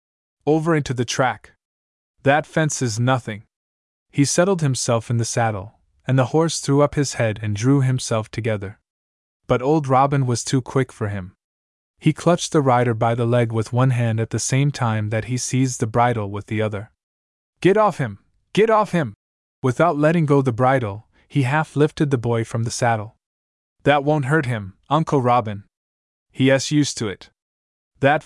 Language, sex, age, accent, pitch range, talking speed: English, male, 20-39, American, 100-145 Hz, 180 wpm